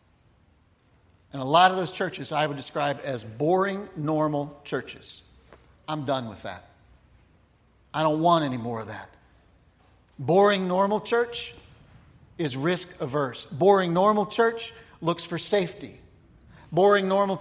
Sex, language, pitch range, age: male, English, 150-200 Hz, 50-69